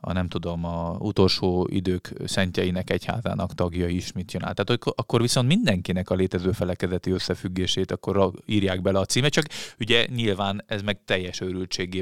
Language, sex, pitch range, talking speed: Hungarian, male, 90-105 Hz, 165 wpm